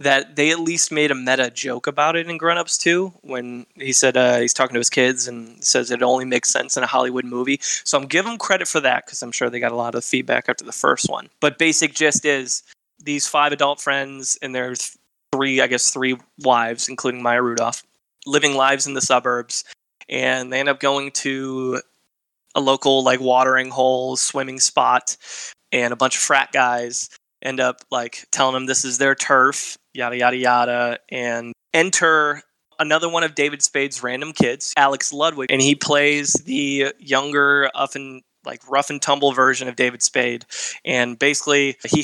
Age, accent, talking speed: 20-39, American, 190 wpm